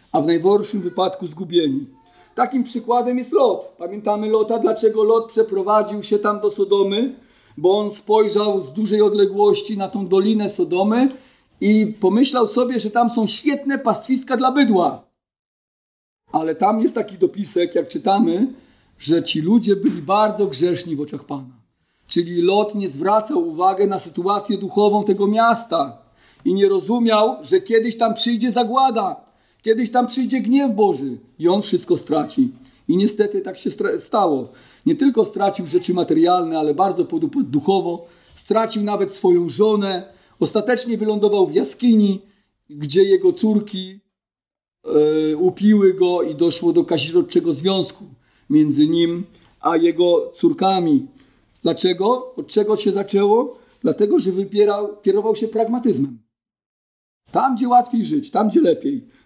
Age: 40-59